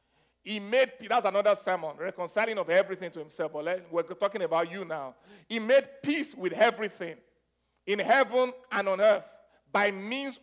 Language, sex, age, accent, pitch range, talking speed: English, male, 50-69, Nigerian, 210-280 Hz, 165 wpm